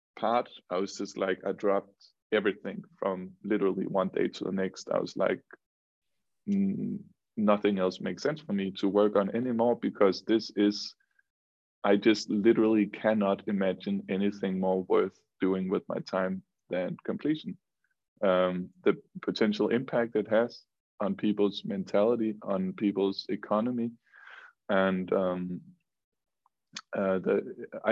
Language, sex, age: Danish, male, 20-39